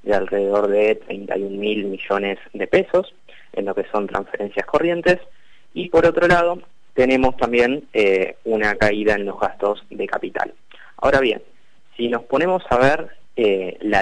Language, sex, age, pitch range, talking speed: Spanish, male, 20-39, 105-150 Hz, 155 wpm